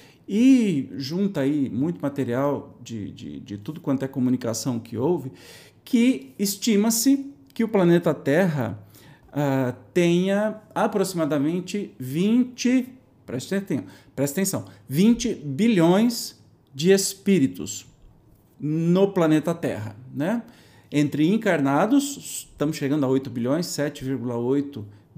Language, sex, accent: Portuguese, male, Brazilian